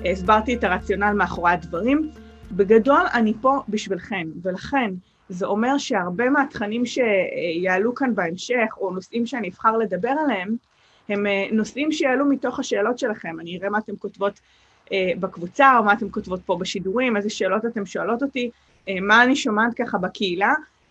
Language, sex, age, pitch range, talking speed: English, female, 30-49, 190-245 Hz, 150 wpm